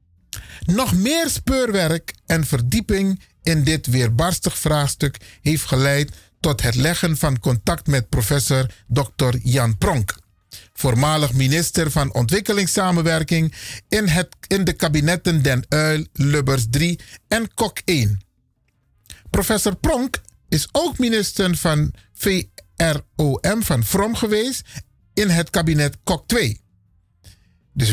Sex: male